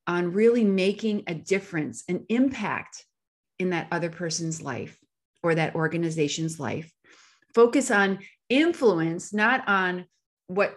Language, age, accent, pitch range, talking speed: English, 30-49, American, 165-215 Hz, 125 wpm